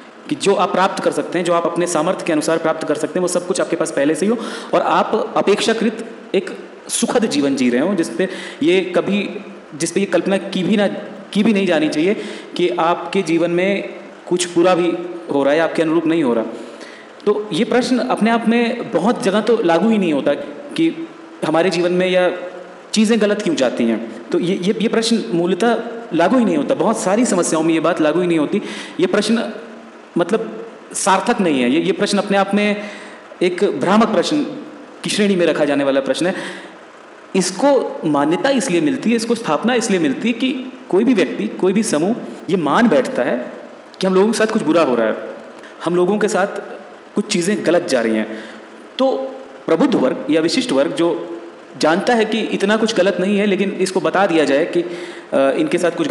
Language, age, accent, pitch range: Hindi, 30-49, native, 170-225 Hz